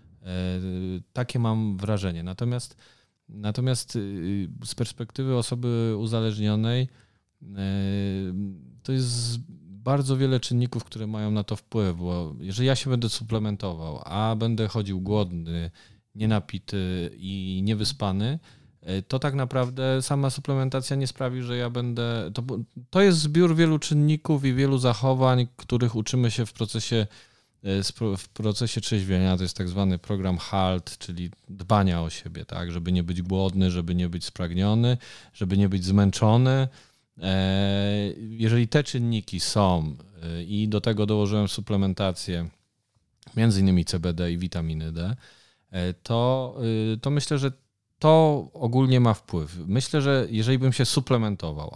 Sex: male